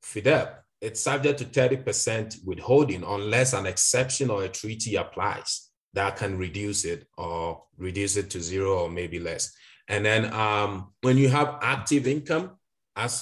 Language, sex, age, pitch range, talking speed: English, male, 30-49, 100-130 Hz, 155 wpm